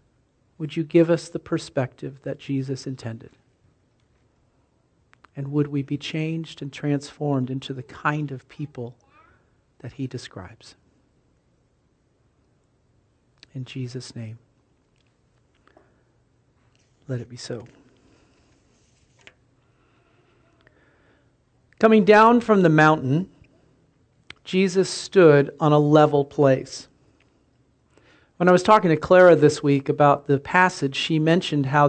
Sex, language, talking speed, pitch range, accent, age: male, English, 105 wpm, 130-165 Hz, American, 50-69